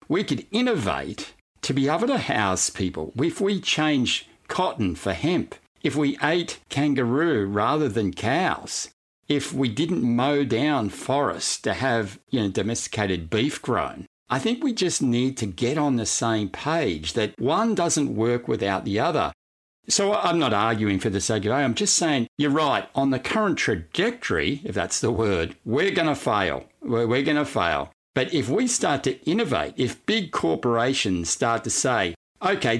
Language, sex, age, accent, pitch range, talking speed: English, male, 60-79, Australian, 105-145 Hz, 175 wpm